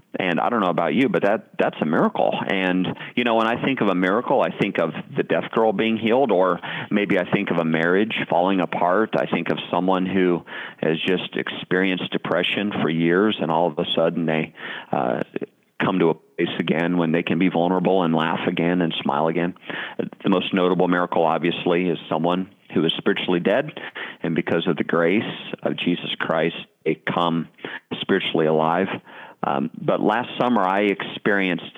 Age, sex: 40-59, male